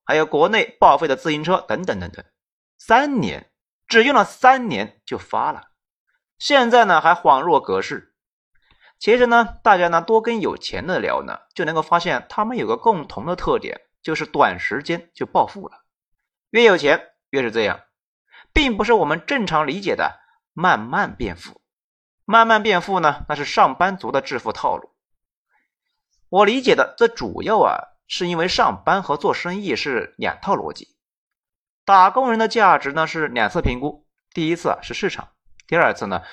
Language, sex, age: Chinese, male, 30-49